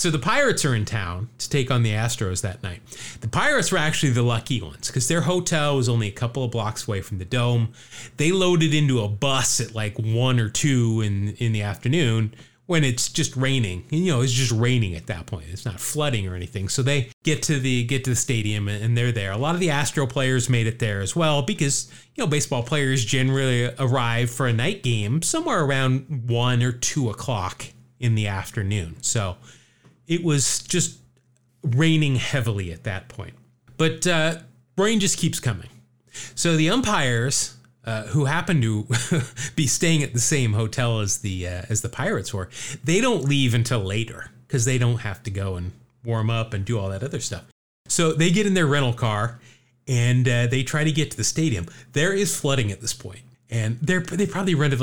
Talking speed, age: 210 wpm, 30-49